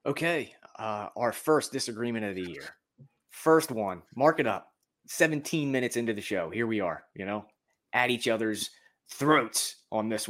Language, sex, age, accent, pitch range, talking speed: English, male, 20-39, American, 110-145 Hz, 170 wpm